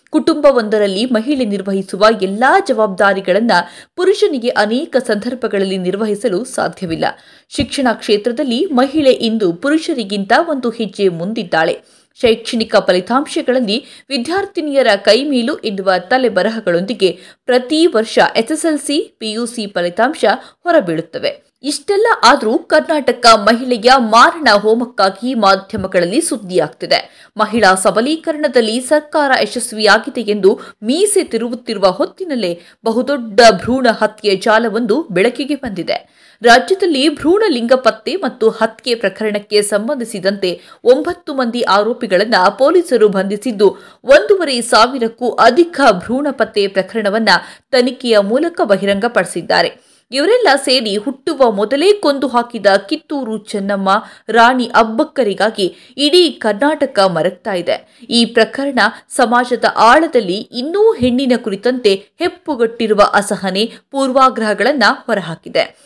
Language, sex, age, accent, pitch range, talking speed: Kannada, female, 20-39, native, 210-280 Hz, 90 wpm